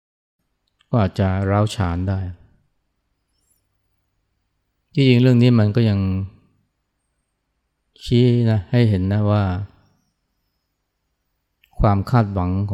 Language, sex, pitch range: Thai, male, 90-110 Hz